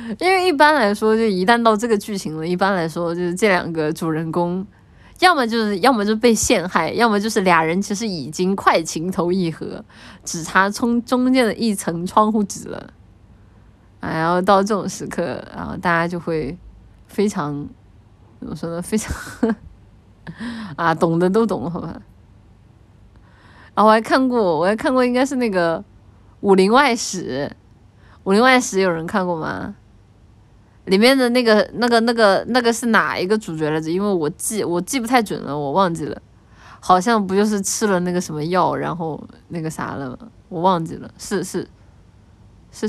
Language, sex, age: Chinese, female, 20-39